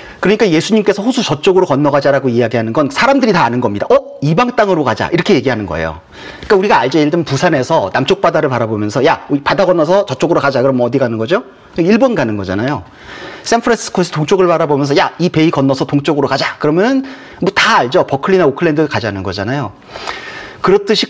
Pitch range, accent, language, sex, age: 125-190 Hz, native, Korean, male, 40-59